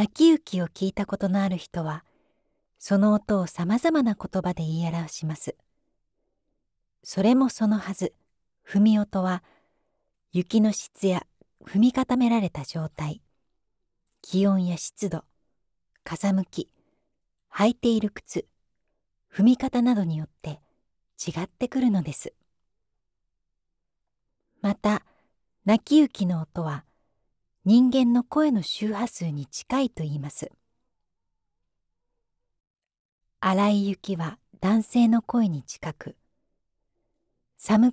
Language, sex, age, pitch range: Japanese, female, 40-59, 160-220 Hz